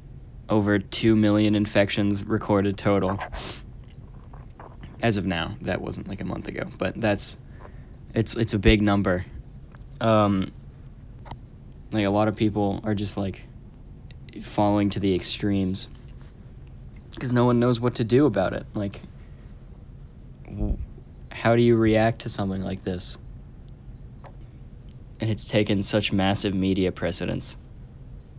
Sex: male